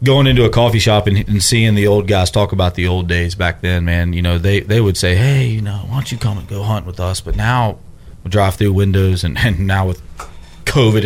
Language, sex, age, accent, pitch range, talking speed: English, male, 30-49, American, 90-110 Hz, 265 wpm